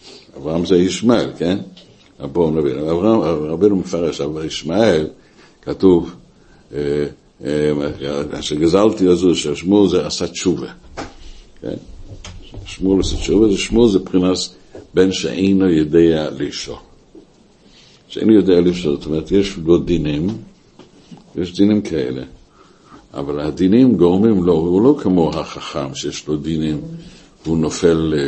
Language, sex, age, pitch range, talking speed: Hebrew, male, 60-79, 80-100 Hz, 115 wpm